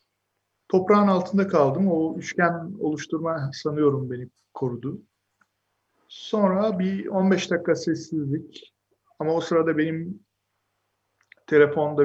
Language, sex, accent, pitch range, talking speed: Turkish, male, native, 135-175 Hz, 95 wpm